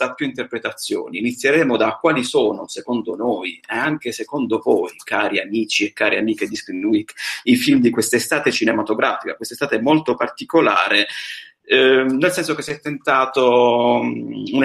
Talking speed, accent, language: 150 wpm, native, Italian